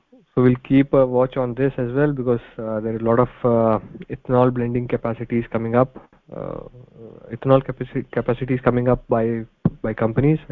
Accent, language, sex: Indian, English, male